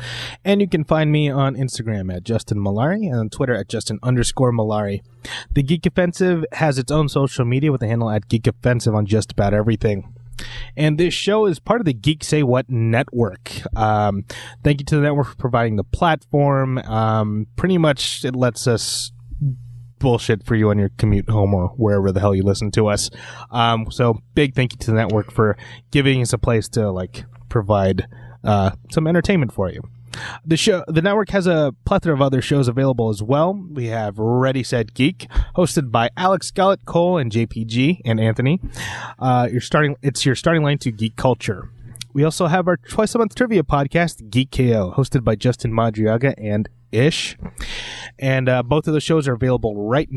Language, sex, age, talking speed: English, male, 20-39, 195 wpm